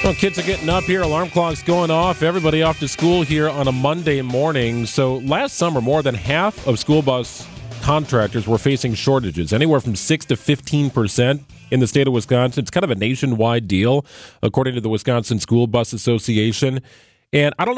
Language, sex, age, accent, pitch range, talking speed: English, male, 40-59, American, 115-155 Hz, 195 wpm